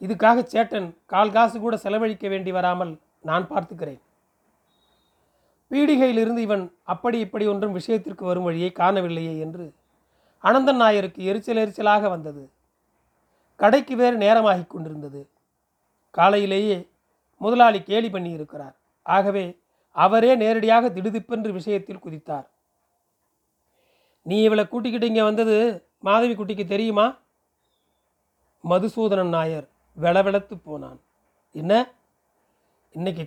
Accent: native